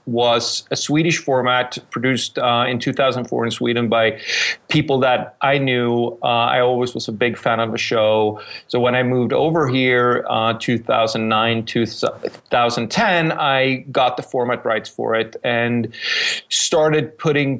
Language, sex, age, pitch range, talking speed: English, male, 30-49, 120-140 Hz, 150 wpm